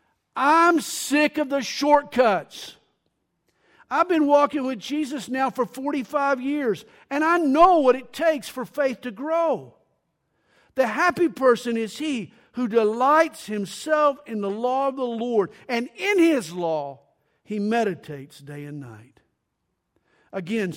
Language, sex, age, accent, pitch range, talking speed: English, male, 50-69, American, 165-270 Hz, 140 wpm